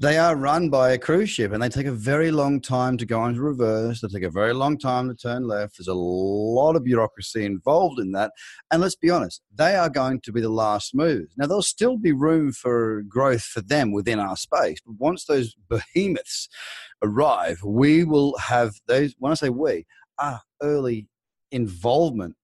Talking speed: 200 wpm